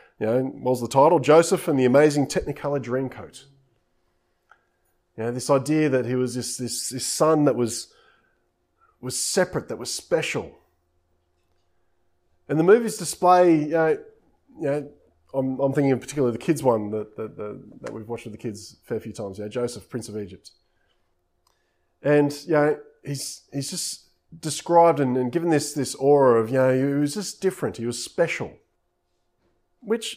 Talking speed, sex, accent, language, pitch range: 185 wpm, male, Australian, English, 110-170 Hz